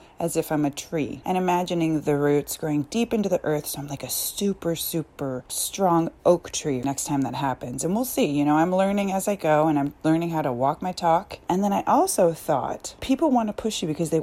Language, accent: English, American